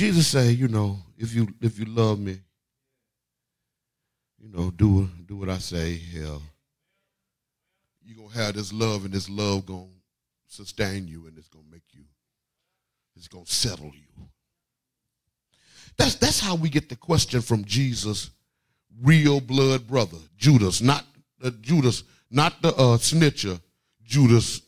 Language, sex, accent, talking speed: English, male, American, 150 wpm